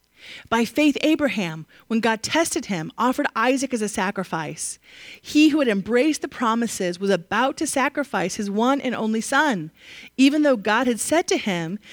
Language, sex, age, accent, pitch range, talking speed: English, female, 30-49, American, 185-285 Hz, 170 wpm